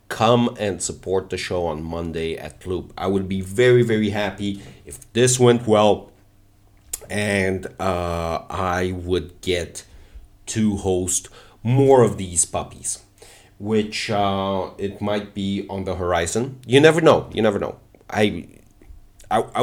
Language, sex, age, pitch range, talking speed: English, male, 40-59, 95-115 Hz, 140 wpm